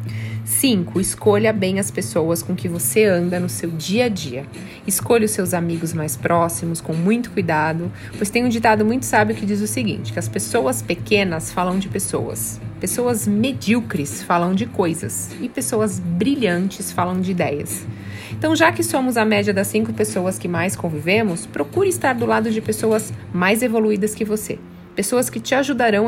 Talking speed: 175 wpm